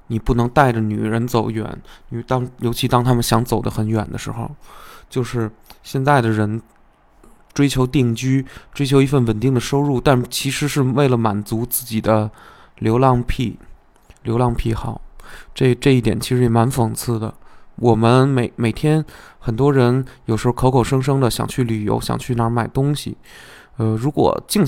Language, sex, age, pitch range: Chinese, male, 20-39, 115-140 Hz